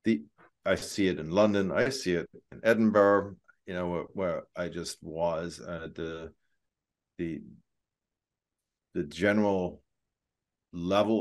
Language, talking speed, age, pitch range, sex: English, 135 wpm, 50-69, 80-95 Hz, male